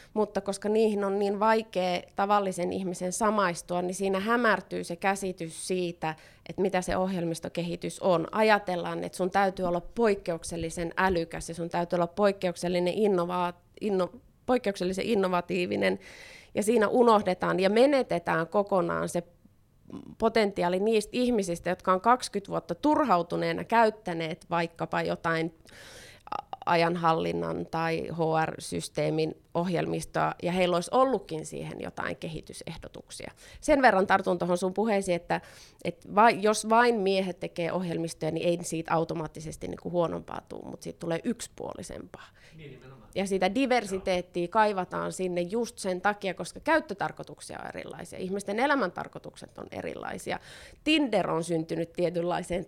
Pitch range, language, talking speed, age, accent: 170-210 Hz, Finnish, 120 wpm, 20-39, native